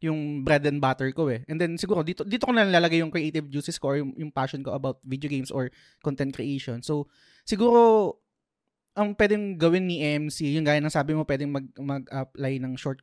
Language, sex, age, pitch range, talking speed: Filipino, male, 20-39, 140-170 Hz, 210 wpm